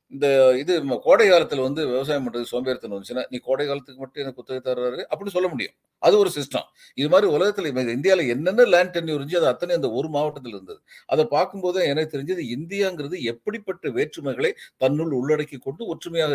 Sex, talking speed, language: male, 170 wpm, Tamil